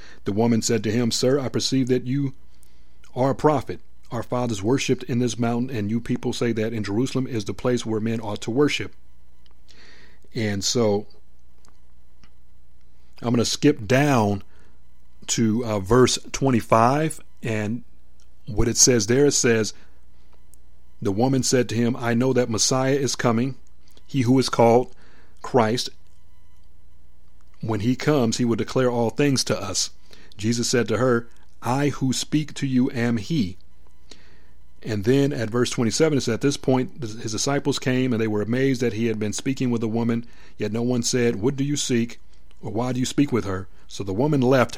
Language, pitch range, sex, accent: English, 95-130 Hz, male, American